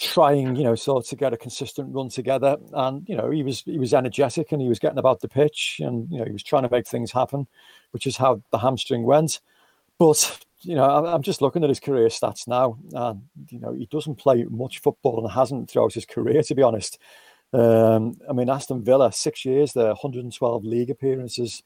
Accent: British